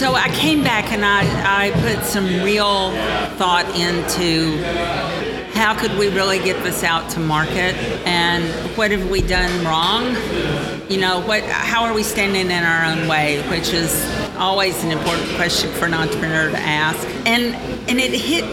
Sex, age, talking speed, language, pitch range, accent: female, 50-69, 170 wpm, English, 175-210 Hz, American